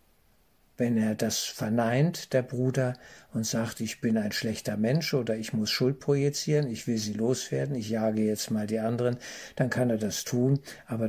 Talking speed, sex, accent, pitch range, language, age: 185 wpm, male, German, 110-125 Hz, German, 50-69